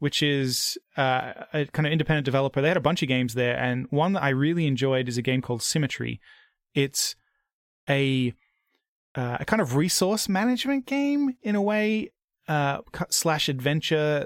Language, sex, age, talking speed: English, male, 20-39, 175 wpm